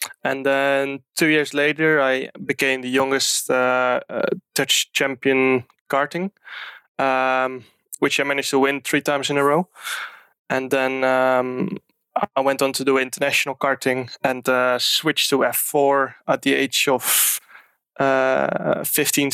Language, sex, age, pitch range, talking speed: English, male, 20-39, 125-140 Hz, 145 wpm